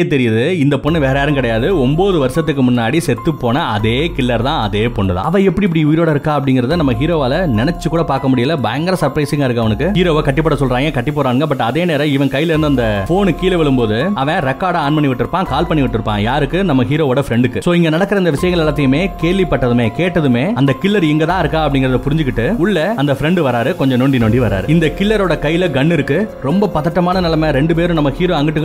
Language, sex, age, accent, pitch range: Tamil, male, 30-49, native, 130-165 Hz